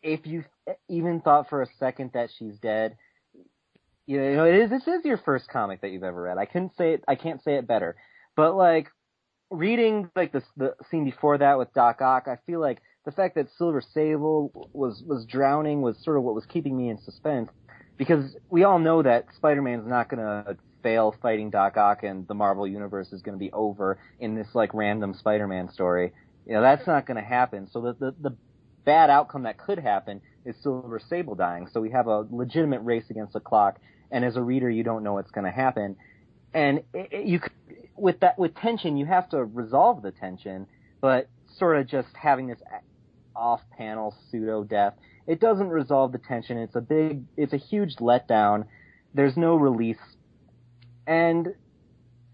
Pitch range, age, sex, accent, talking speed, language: 110-155 Hz, 30-49, male, American, 195 wpm, English